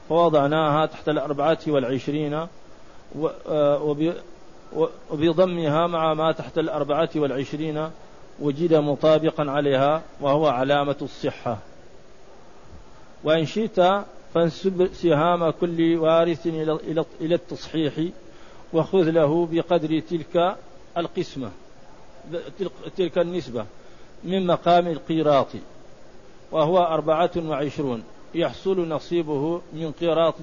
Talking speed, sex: 80 wpm, male